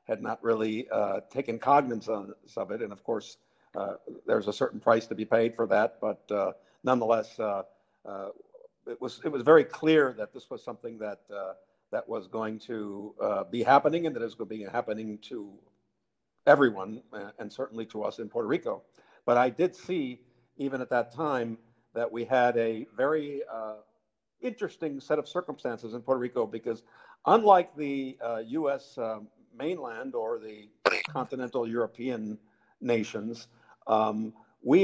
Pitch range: 115-145 Hz